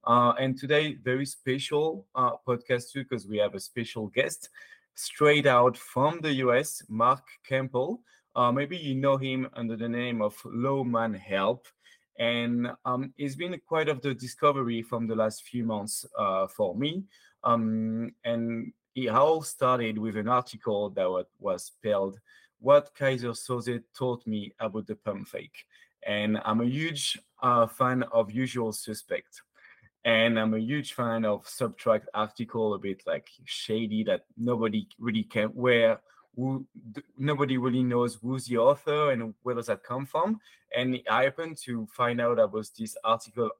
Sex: male